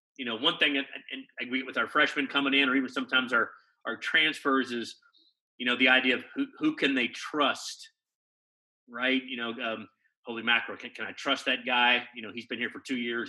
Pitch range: 125-145 Hz